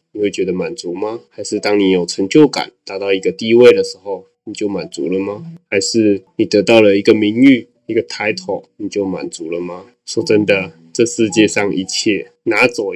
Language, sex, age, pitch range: Chinese, male, 20-39, 100-130 Hz